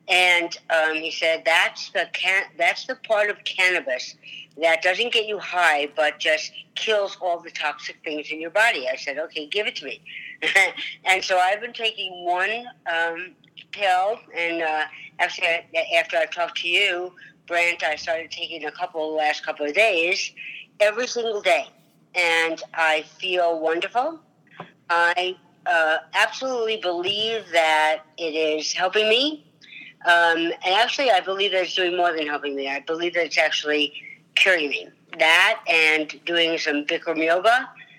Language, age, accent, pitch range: English, 60-79, American, 160-190 Hz